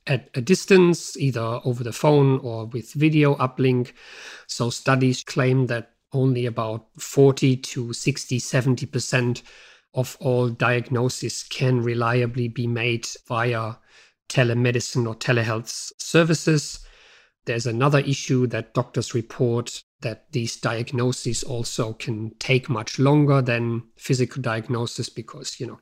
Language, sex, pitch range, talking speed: English, male, 120-135 Hz, 125 wpm